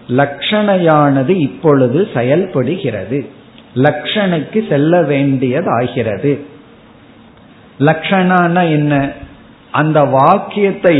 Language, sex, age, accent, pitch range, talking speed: Tamil, male, 50-69, native, 135-185 Hz, 55 wpm